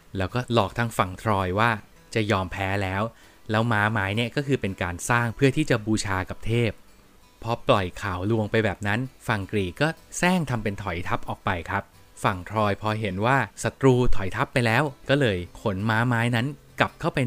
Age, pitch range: 20-39, 100-125 Hz